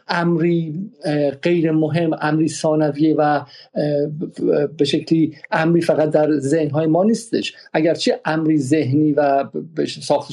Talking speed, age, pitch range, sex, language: 110 wpm, 50-69, 145-170 Hz, male, Persian